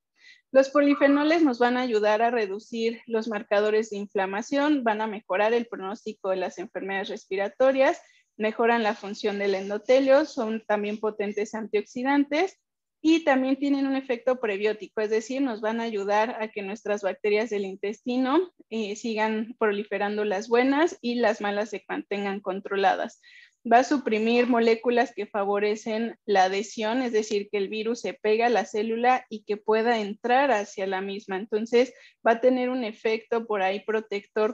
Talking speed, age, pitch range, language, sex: 160 wpm, 30-49, 205-245 Hz, Spanish, female